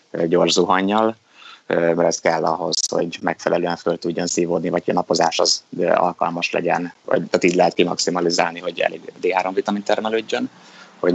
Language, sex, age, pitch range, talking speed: Hungarian, male, 20-39, 85-95 Hz, 150 wpm